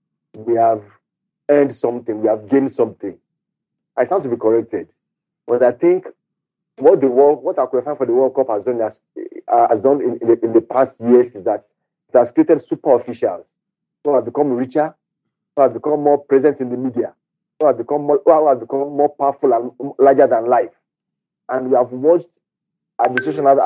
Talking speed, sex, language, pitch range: 180 wpm, male, English, 120-150 Hz